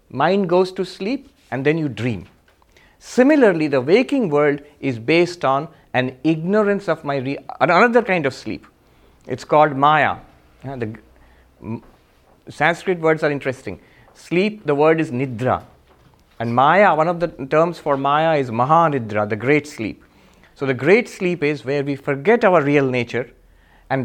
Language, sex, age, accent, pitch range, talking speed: English, male, 50-69, Indian, 120-175 Hz, 150 wpm